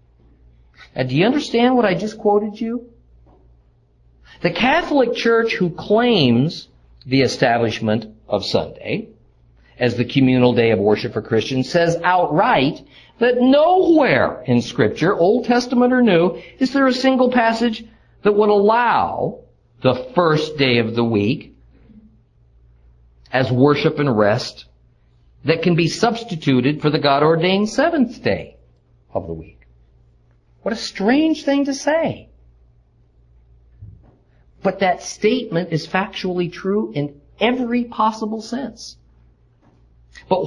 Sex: male